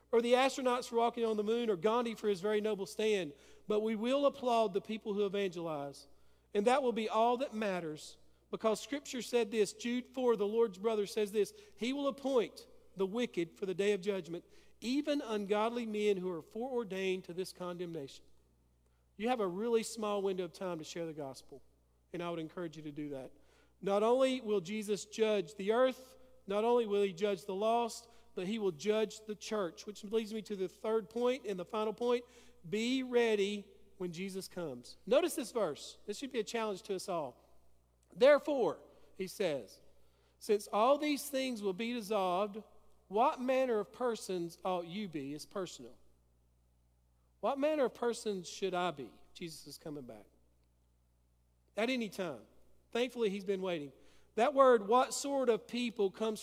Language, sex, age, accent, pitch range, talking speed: English, male, 40-59, American, 180-235 Hz, 180 wpm